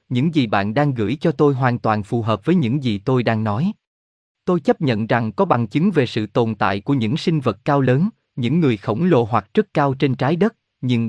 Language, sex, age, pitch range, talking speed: Vietnamese, male, 20-39, 115-155 Hz, 245 wpm